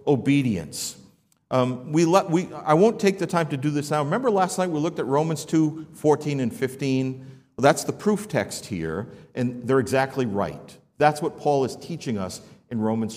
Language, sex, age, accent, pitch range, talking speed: English, male, 50-69, American, 120-155 Hz, 195 wpm